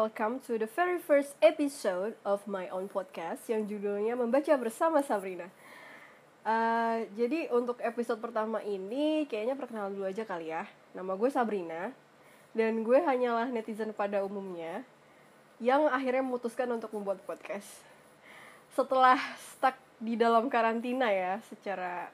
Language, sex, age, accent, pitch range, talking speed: Indonesian, female, 20-39, native, 205-255 Hz, 135 wpm